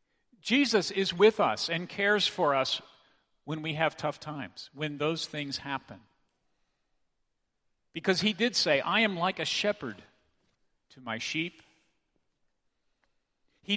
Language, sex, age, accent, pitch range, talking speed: English, male, 50-69, American, 135-185 Hz, 130 wpm